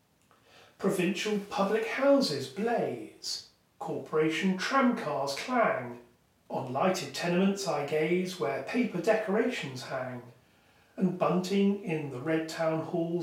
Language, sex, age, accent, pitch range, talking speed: English, male, 40-59, British, 155-200 Hz, 105 wpm